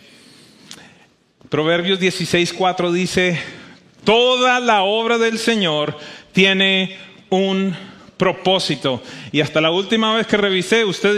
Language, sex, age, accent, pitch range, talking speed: English, male, 40-59, Mexican, 150-215 Hz, 100 wpm